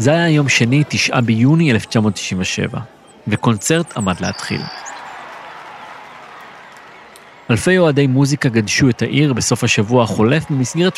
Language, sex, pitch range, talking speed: Hebrew, male, 110-145 Hz, 110 wpm